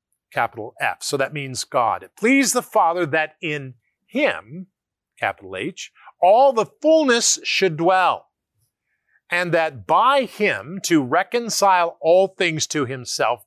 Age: 50-69